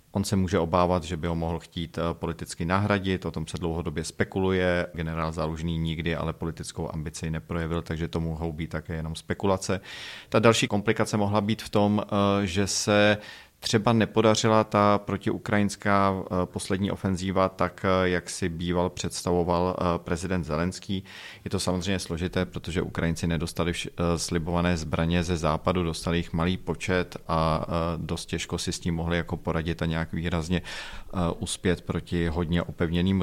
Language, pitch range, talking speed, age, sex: Czech, 85-100 Hz, 150 wpm, 40-59, male